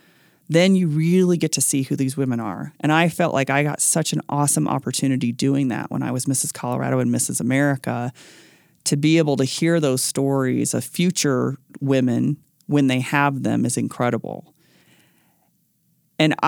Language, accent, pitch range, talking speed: English, American, 135-165 Hz, 170 wpm